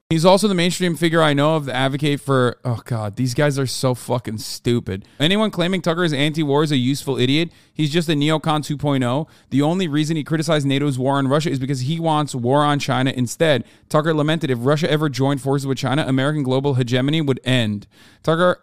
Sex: male